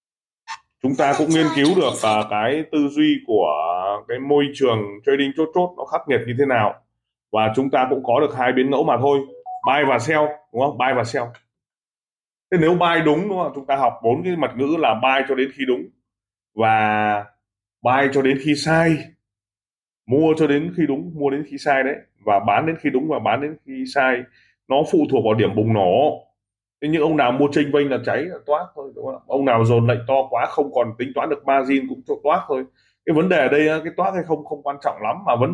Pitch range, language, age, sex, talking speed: 115-150 Hz, Vietnamese, 20-39, male, 235 wpm